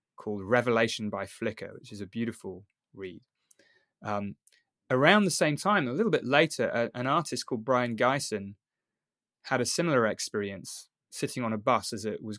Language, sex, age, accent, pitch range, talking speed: English, male, 20-39, British, 105-130 Hz, 170 wpm